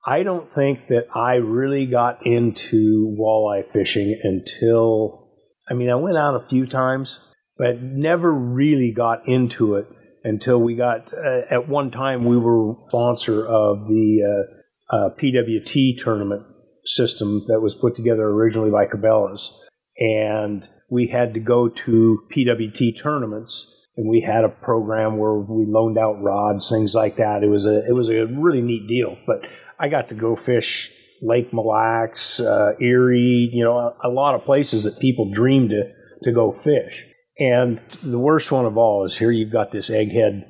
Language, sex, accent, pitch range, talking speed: English, male, American, 110-125 Hz, 170 wpm